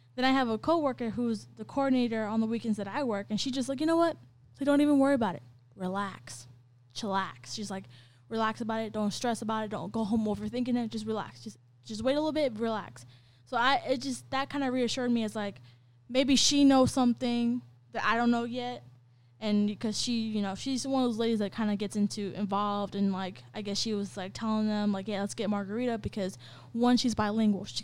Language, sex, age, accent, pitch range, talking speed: English, female, 10-29, American, 200-235 Hz, 230 wpm